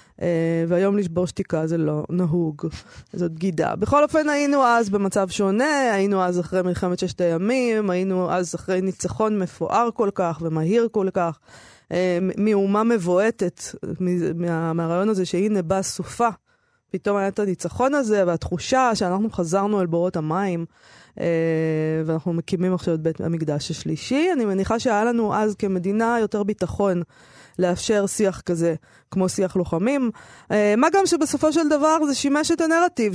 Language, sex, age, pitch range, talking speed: Hebrew, female, 20-39, 180-235 Hz, 140 wpm